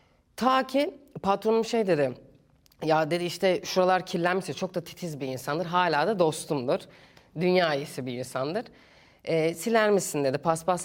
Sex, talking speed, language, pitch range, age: female, 145 wpm, Turkish, 160-215 Hz, 30-49